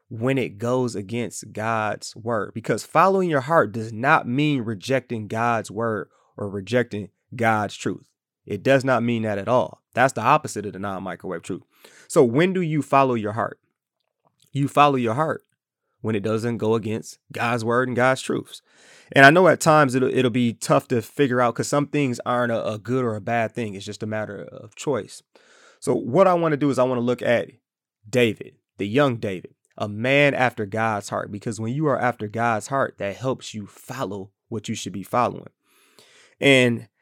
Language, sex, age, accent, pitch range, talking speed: English, male, 20-39, American, 110-135 Hz, 200 wpm